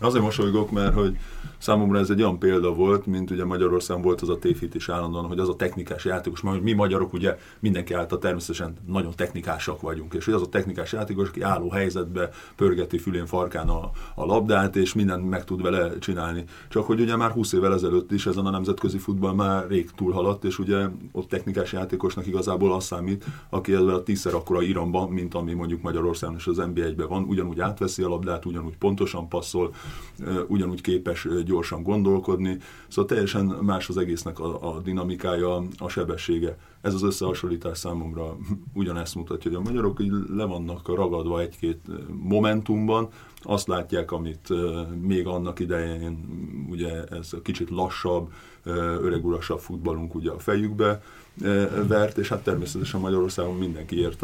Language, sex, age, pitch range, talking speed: Hungarian, male, 30-49, 85-100 Hz, 165 wpm